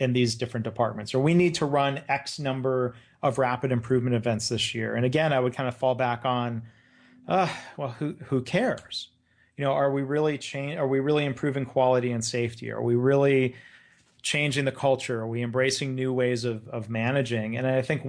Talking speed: 200 wpm